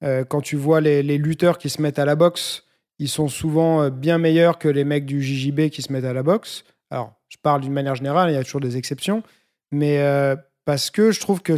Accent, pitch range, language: French, 145-180 Hz, French